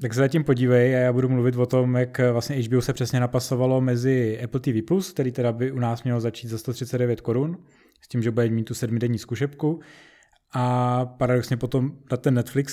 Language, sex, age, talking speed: Czech, male, 20-39, 205 wpm